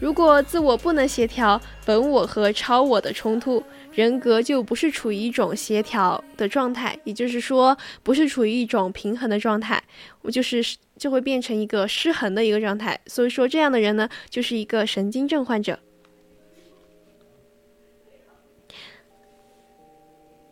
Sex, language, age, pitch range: female, Chinese, 10-29, 210-265 Hz